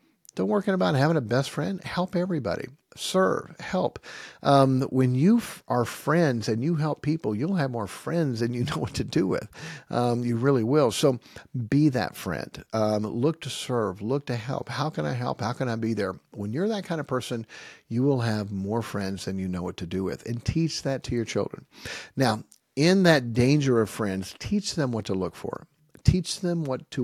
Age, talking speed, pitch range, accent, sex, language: 50-69, 210 wpm, 110-155 Hz, American, male, English